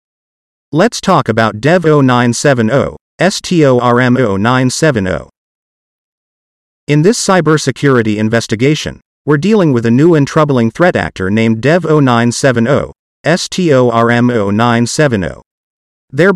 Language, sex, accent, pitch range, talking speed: English, male, American, 110-155 Hz, 80 wpm